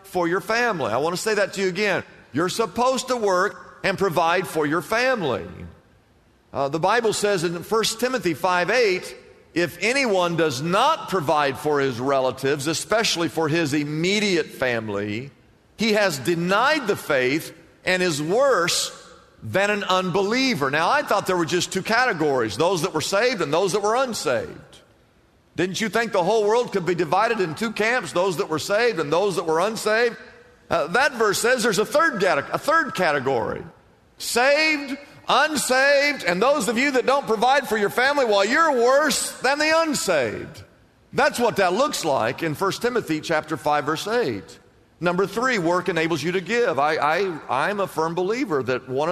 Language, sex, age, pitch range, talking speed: English, male, 50-69, 160-235 Hz, 180 wpm